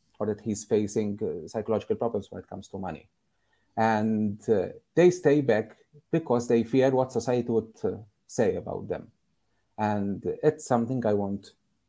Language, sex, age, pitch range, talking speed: English, male, 30-49, 105-120 Hz, 160 wpm